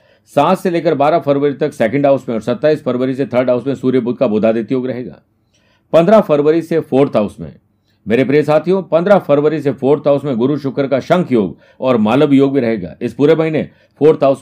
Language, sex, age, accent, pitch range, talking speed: Hindi, male, 50-69, native, 110-150 Hz, 215 wpm